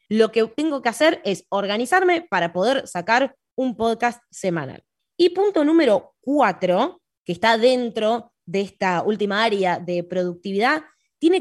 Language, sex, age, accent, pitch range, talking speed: Spanish, female, 20-39, Argentinian, 200-280 Hz, 140 wpm